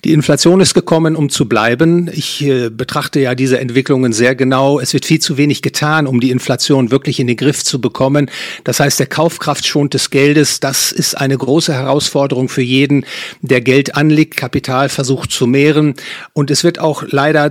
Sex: male